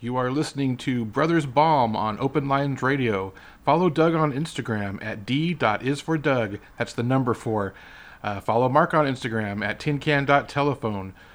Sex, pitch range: male, 115-150 Hz